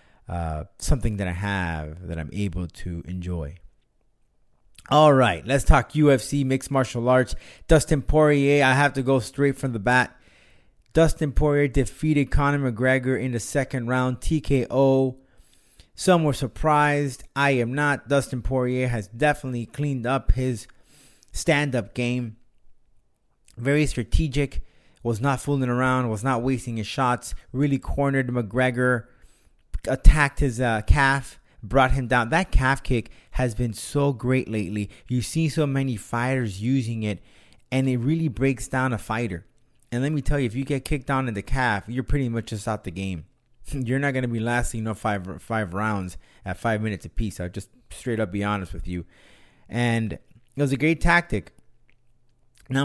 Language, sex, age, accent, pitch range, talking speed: English, male, 30-49, American, 110-140 Hz, 165 wpm